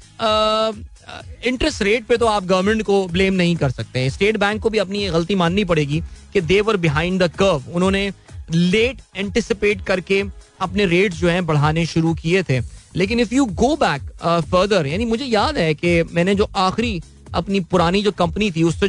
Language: Hindi